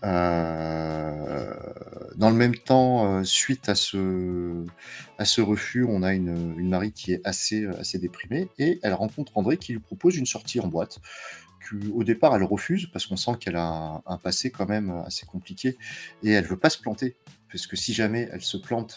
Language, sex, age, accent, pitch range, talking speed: French, male, 30-49, French, 85-110 Hz, 200 wpm